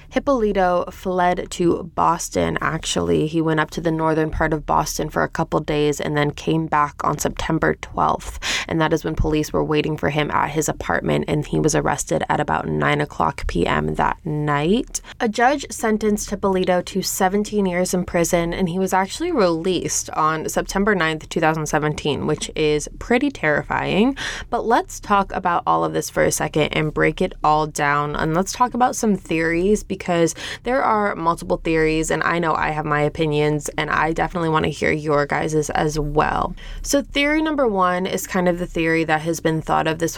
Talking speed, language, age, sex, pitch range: 190 wpm, English, 20-39, female, 150-190 Hz